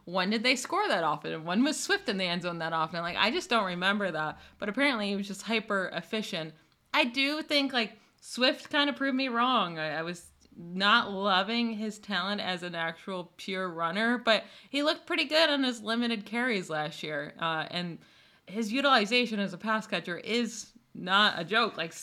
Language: English